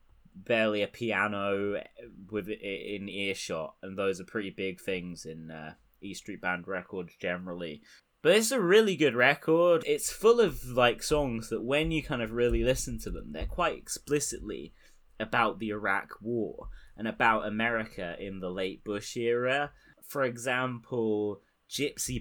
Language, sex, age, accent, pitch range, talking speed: English, male, 10-29, British, 90-115 Hz, 155 wpm